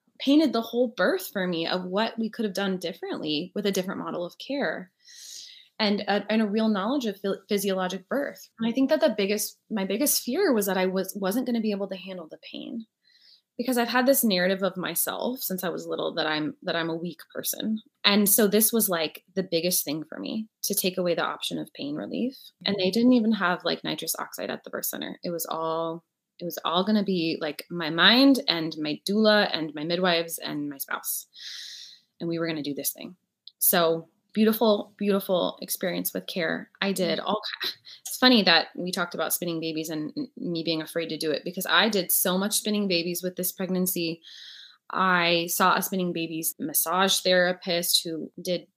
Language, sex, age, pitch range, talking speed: English, female, 20-39, 170-220 Hz, 210 wpm